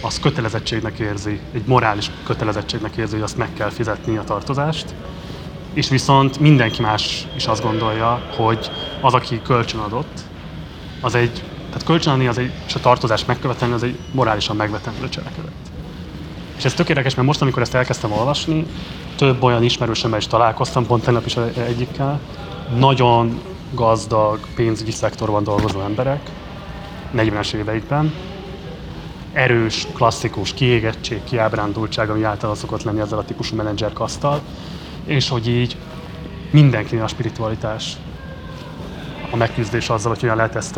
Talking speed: 130 wpm